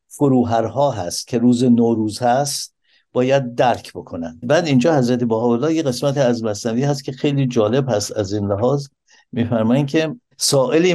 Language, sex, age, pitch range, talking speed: Persian, male, 60-79, 115-145 Hz, 150 wpm